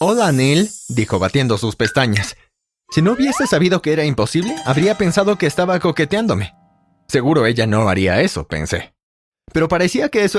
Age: 30-49